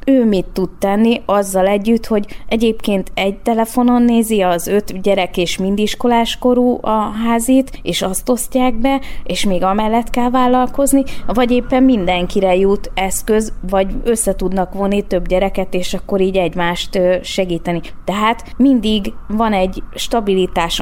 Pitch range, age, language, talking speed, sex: 180-225 Hz, 20-39, Hungarian, 140 wpm, female